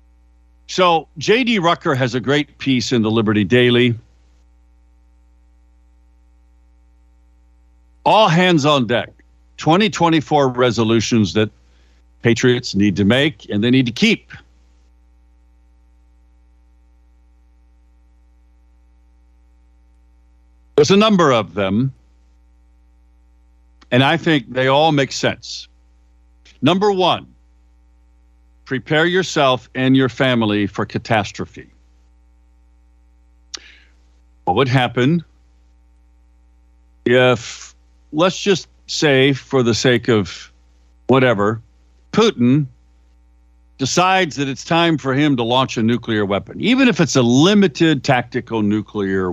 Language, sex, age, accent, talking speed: English, male, 60-79, American, 95 wpm